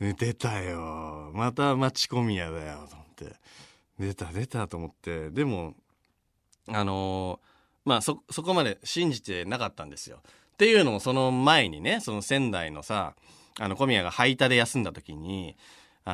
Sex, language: male, Japanese